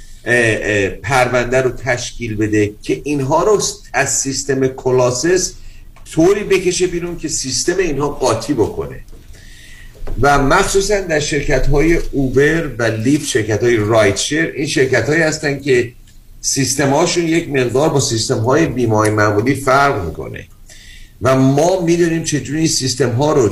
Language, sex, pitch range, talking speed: Persian, male, 115-155 Hz, 135 wpm